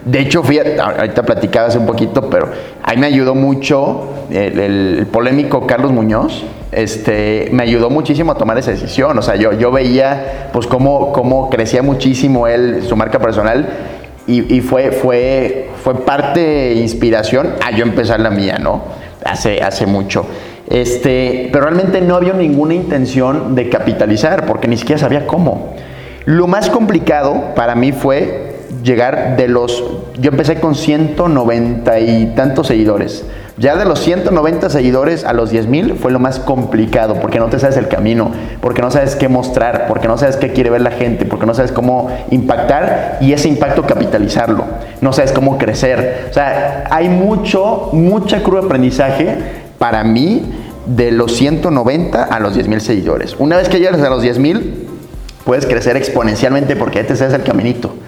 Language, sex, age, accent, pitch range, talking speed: Spanish, male, 30-49, Mexican, 120-140 Hz, 175 wpm